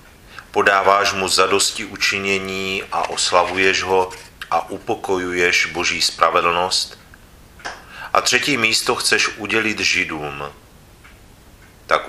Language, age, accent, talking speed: Czech, 40-59, native, 90 wpm